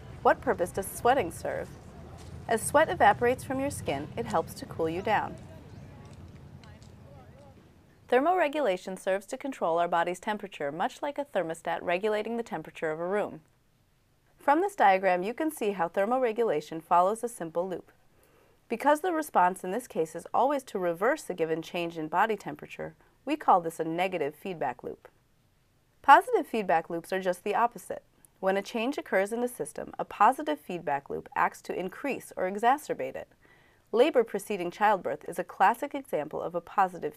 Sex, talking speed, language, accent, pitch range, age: female, 165 wpm, English, American, 175-250 Hz, 30-49